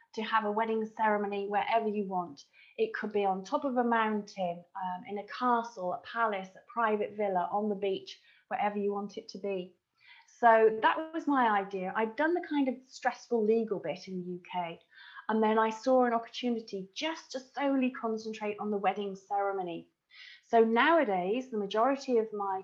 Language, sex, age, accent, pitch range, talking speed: English, female, 30-49, British, 200-245 Hz, 185 wpm